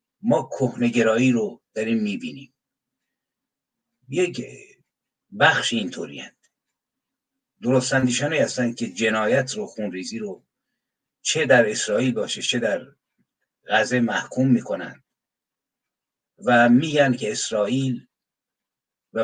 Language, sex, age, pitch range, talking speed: Persian, male, 60-79, 120-140 Hz, 95 wpm